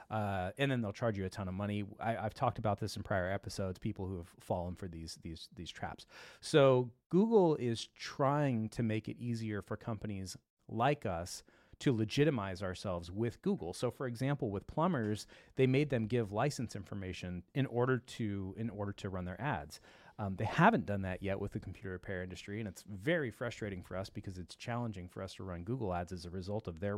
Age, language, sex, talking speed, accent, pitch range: 30-49, English, male, 210 wpm, American, 95-125 Hz